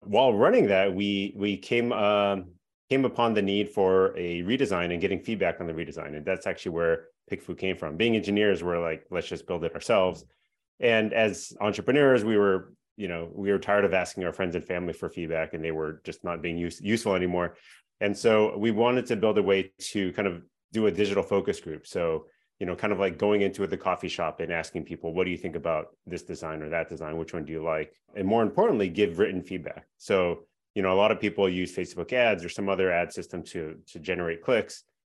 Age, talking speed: 30-49, 230 wpm